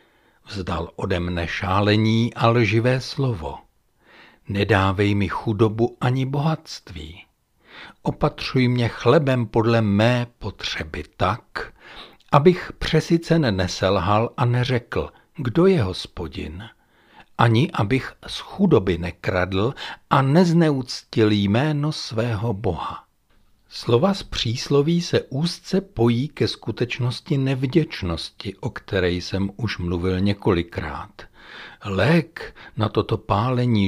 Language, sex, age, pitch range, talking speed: Czech, male, 60-79, 100-135 Hz, 100 wpm